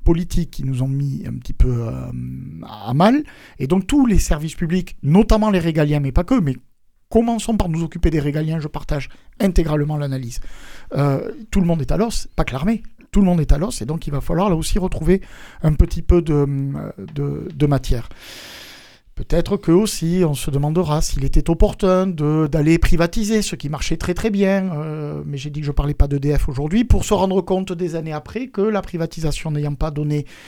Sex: male